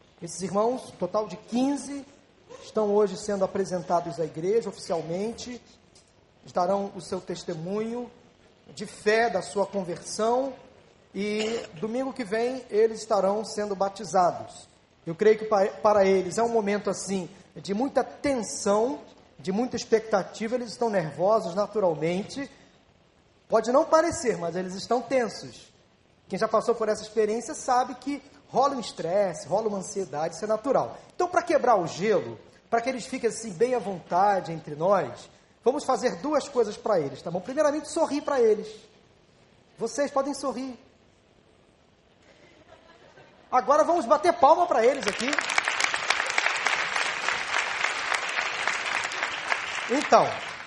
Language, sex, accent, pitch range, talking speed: Portuguese, male, Brazilian, 195-255 Hz, 130 wpm